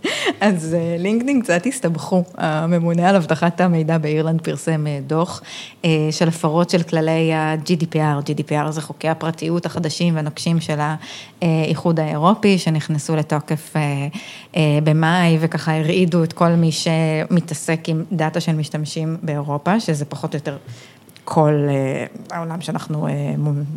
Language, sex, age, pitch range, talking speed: Hebrew, female, 20-39, 155-185 Hz, 120 wpm